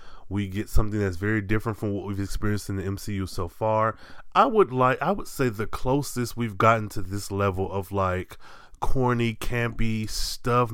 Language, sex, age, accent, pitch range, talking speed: English, male, 20-39, American, 95-120 Hz, 185 wpm